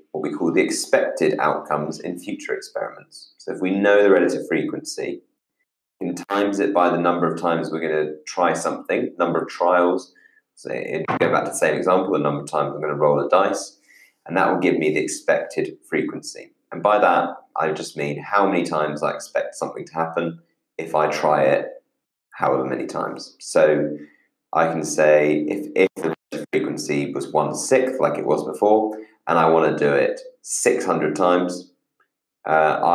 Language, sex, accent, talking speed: English, male, British, 190 wpm